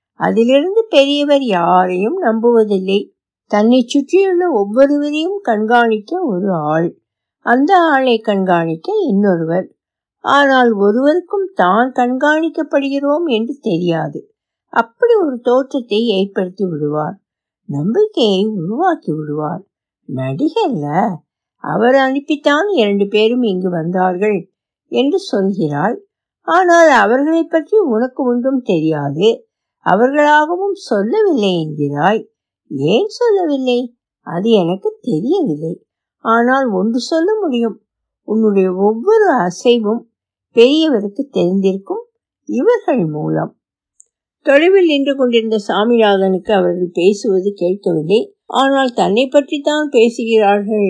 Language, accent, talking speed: Tamil, native, 70 wpm